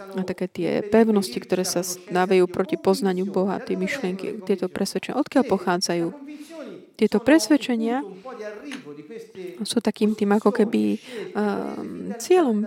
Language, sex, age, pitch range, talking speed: Slovak, female, 20-39, 195-235 Hz, 120 wpm